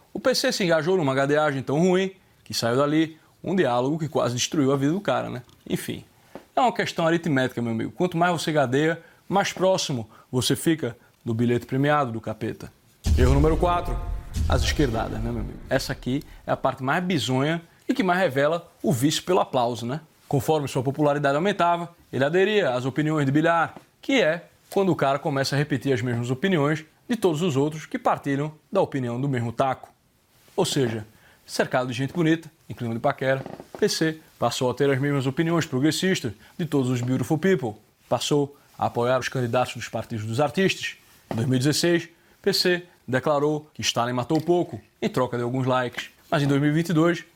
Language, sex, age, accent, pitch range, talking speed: Portuguese, male, 20-39, Brazilian, 125-170 Hz, 180 wpm